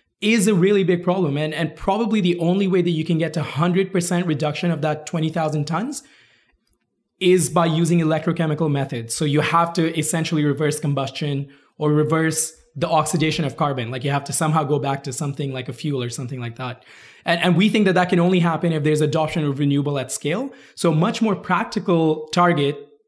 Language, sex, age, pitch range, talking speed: English, male, 20-39, 150-175 Hz, 200 wpm